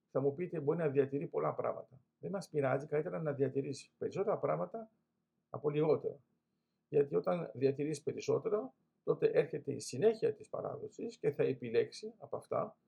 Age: 50-69